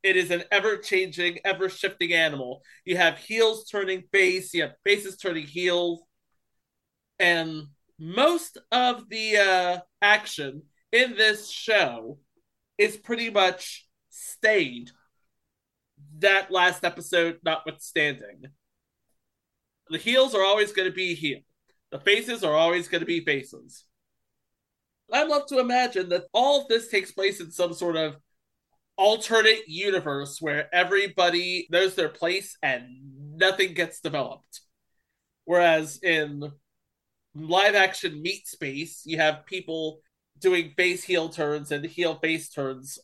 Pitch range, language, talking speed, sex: 160-195 Hz, English, 125 wpm, male